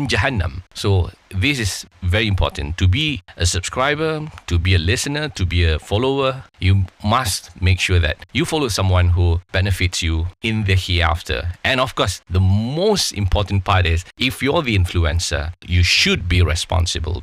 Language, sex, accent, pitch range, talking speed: English, male, Malaysian, 85-105 Hz, 165 wpm